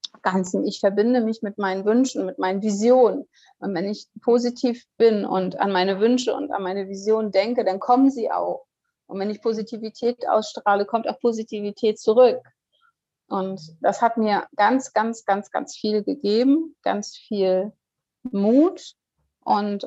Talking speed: 155 wpm